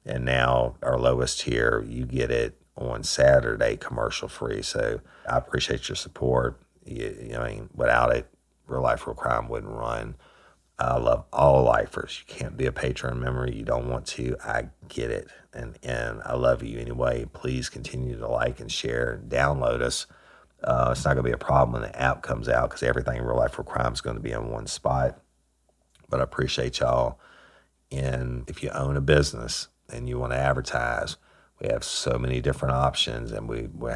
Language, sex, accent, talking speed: English, male, American, 195 wpm